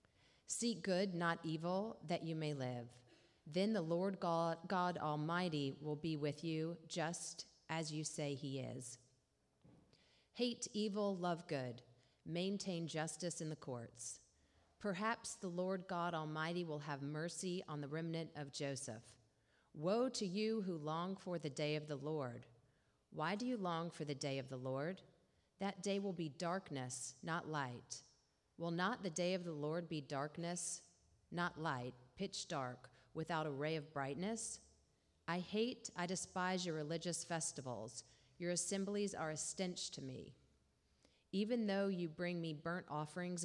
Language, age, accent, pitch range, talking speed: English, 40-59, American, 145-180 Hz, 155 wpm